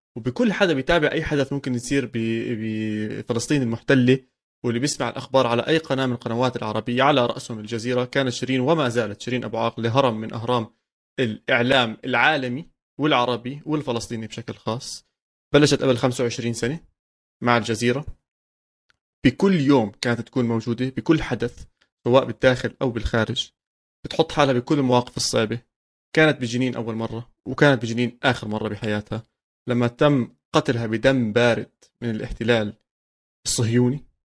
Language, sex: Arabic, male